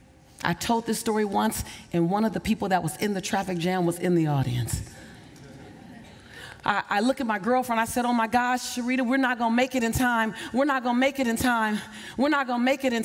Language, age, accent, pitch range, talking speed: English, 40-59, American, 220-285 Hz, 255 wpm